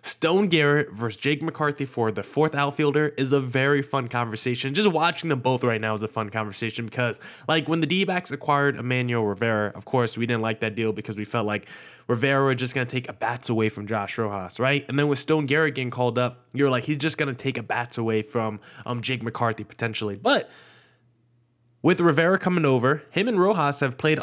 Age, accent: 20-39, American